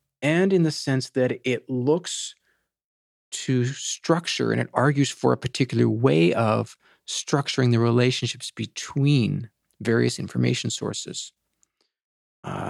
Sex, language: male, English